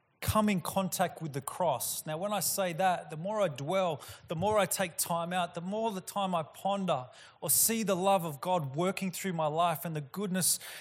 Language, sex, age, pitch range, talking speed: English, male, 20-39, 135-180 Hz, 220 wpm